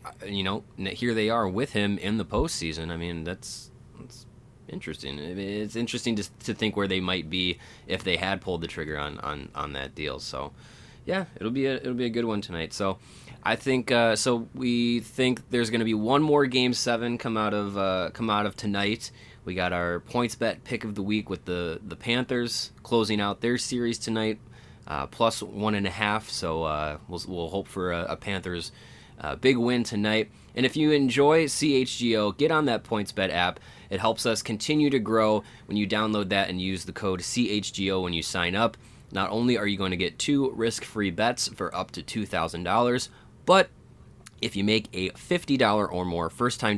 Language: English